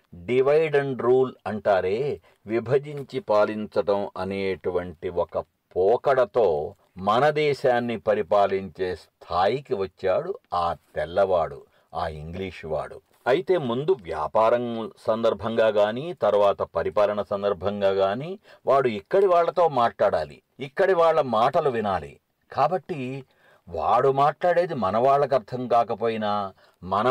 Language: English